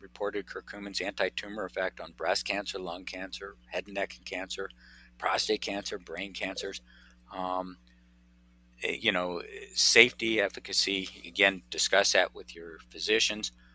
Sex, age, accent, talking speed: male, 50-69, American, 120 wpm